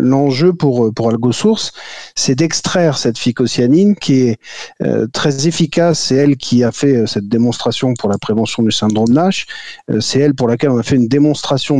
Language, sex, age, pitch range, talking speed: French, male, 50-69, 120-155 Hz, 195 wpm